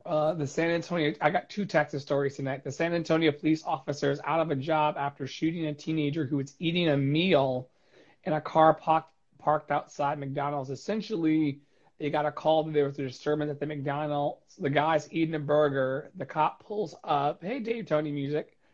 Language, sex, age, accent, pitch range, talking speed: English, male, 30-49, American, 140-165 Hz, 195 wpm